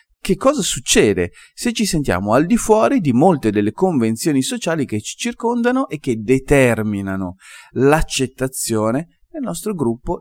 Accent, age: native, 30-49